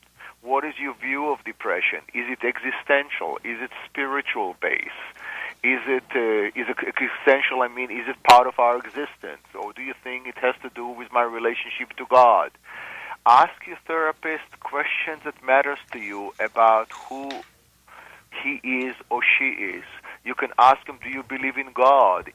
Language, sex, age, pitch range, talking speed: English, male, 40-59, 120-145 Hz, 165 wpm